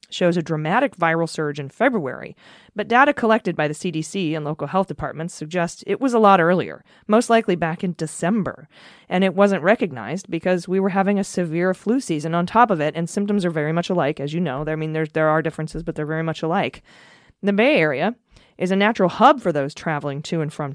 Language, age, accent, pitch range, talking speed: English, 30-49, American, 155-190 Hz, 225 wpm